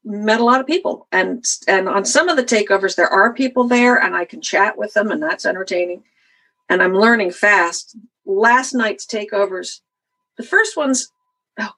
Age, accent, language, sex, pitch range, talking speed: 50-69, American, English, female, 195-310 Hz, 185 wpm